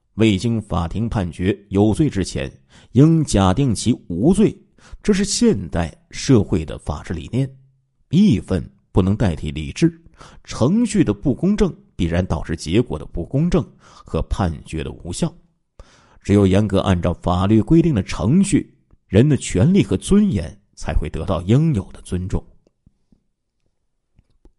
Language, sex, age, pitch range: Chinese, male, 50-69, 90-135 Hz